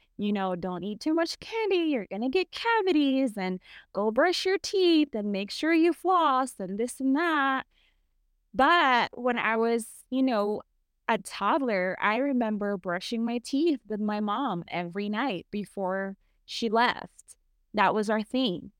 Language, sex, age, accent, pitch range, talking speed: English, female, 20-39, American, 185-235 Hz, 160 wpm